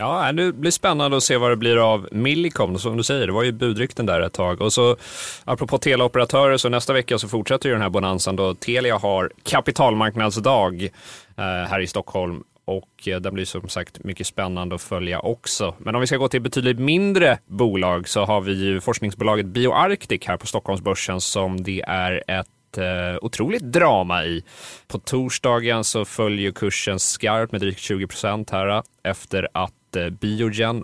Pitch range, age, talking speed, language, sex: 95-125 Hz, 30-49, 175 wpm, Swedish, male